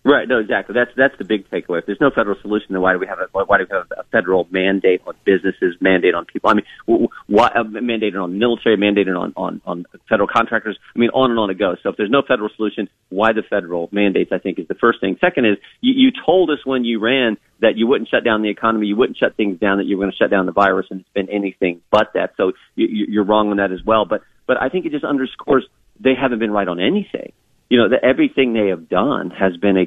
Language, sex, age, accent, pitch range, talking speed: English, male, 40-59, American, 105-150 Hz, 260 wpm